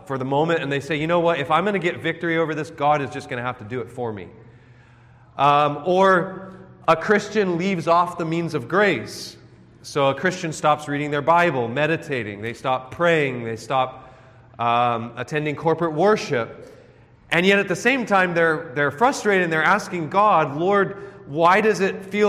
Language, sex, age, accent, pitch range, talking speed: English, male, 30-49, American, 135-190 Hz, 195 wpm